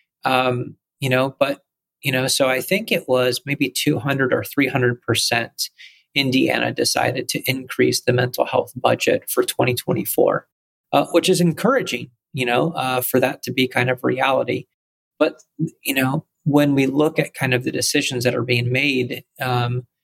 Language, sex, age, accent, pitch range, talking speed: English, male, 30-49, American, 125-145 Hz, 165 wpm